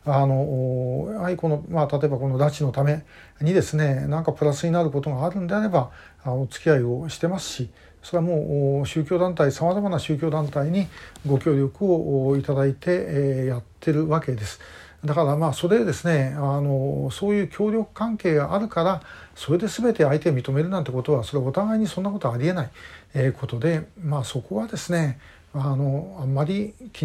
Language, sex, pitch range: Japanese, male, 135-175 Hz